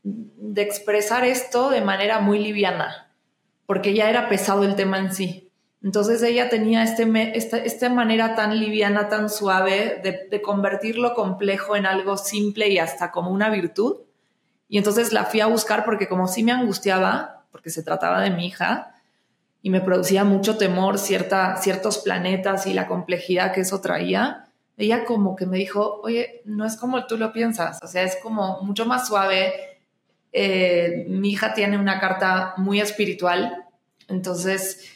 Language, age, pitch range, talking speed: Spanish, 20-39, 185-210 Hz, 170 wpm